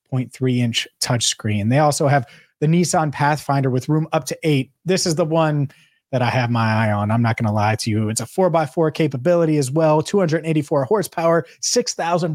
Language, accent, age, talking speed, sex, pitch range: English, American, 30-49, 210 wpm, male, 125-165 Hz